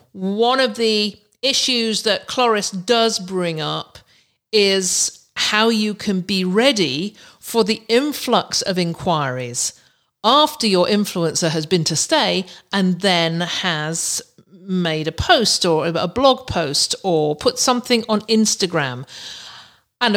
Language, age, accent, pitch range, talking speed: English, 50-69, British, 175-220 Hz, 130 wpm